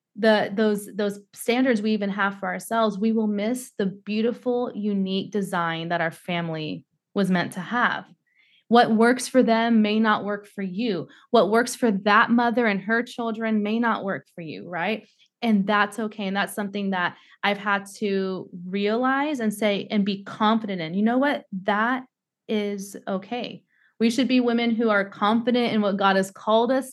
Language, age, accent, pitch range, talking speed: English, 20-39, American, 185-230 Hz, 185 wpm